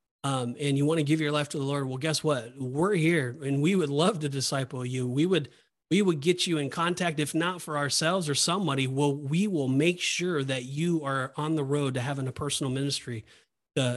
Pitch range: 140-165 Hz